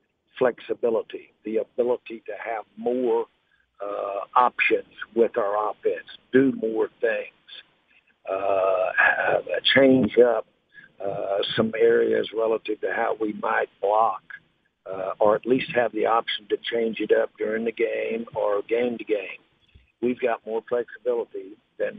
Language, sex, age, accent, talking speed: English, male, 60-79, American, 135 wpm